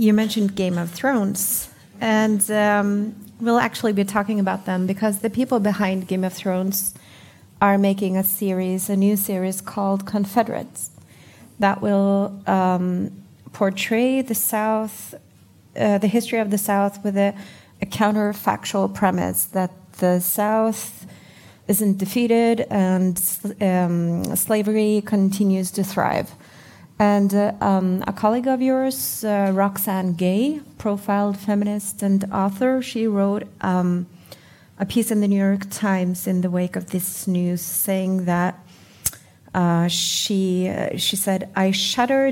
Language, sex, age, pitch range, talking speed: English, female, 30-49, 185-210 Hz, 135 wpm